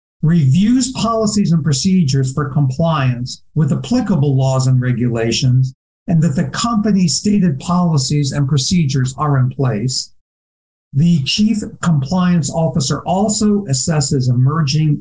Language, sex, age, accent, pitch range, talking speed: English, male, 60-79, American, 135-180 Hz, 115 wpm